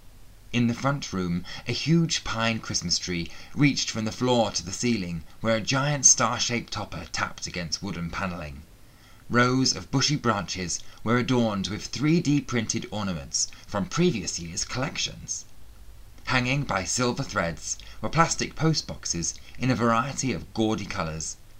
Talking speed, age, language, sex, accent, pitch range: 140 wpm, 30-49, English, male, British, 95-125 Hz